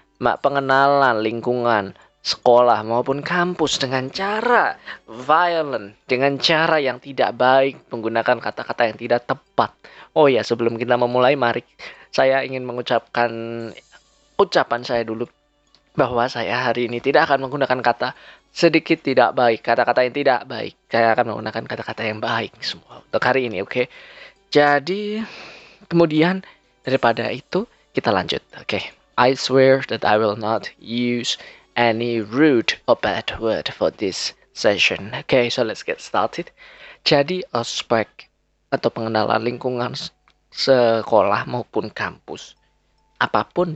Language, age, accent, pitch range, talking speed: Indonesian, 20-39, native, 120-145 Hz, 130 wpm